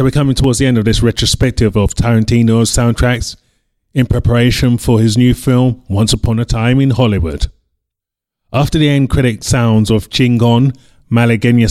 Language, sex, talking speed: English, male, 165 wpm